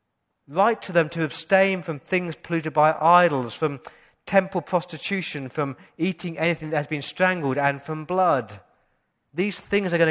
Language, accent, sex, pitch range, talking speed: English, British, male, 125-170 Hz, 160 wpm